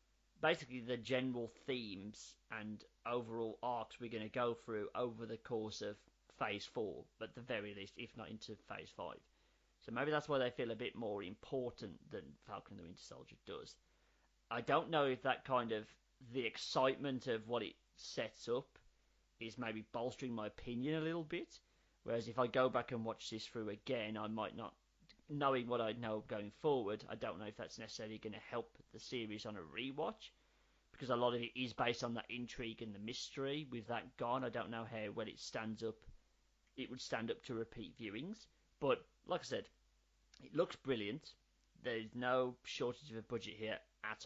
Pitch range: 110-130 Hz